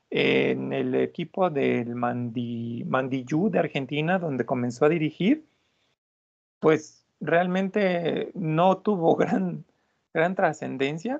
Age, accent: 40-59, Mexican